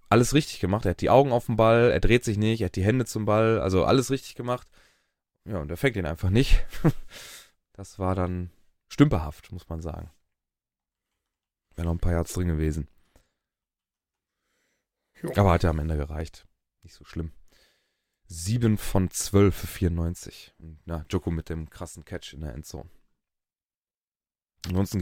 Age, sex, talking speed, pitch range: 20-39, male, 165 wpm, 85-110 Hz